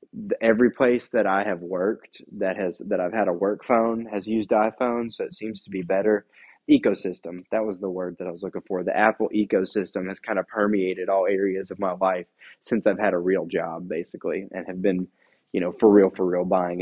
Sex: male